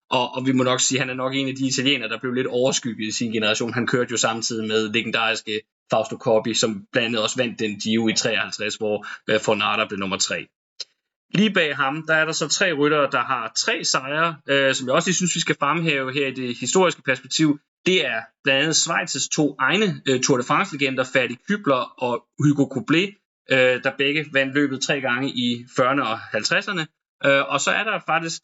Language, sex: Danish, male